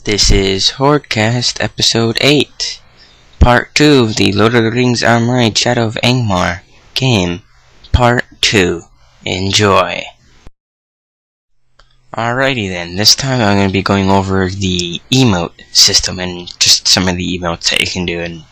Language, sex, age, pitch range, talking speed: English, male, 20-39, 90-115 Hz, 145 wpm